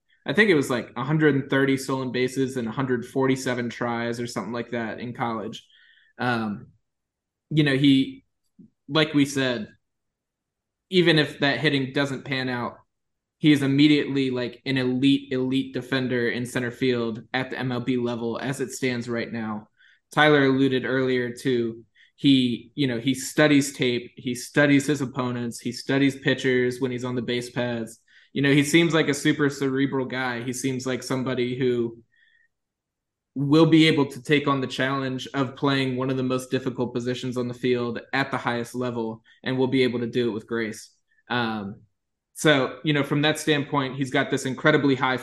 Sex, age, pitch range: male, 20-39, 120-140 Hz